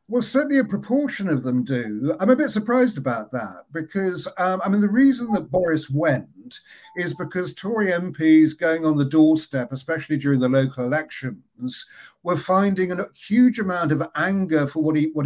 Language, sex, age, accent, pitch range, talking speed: English, male, 50-69, British, 150-200 Hz, 180 wpm